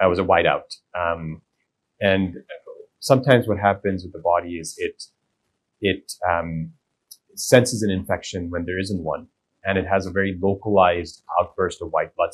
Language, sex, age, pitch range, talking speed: English, male, 30-49, 85-105 Hz, 165 wpm